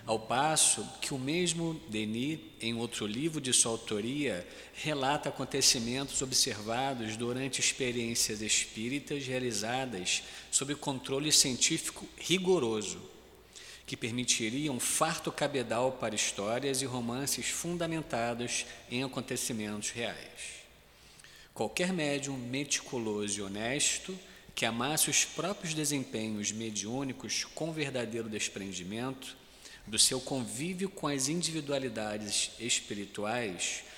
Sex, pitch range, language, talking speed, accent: male, 115-150 Hz, Portuguese, 100 wpm, Brazilian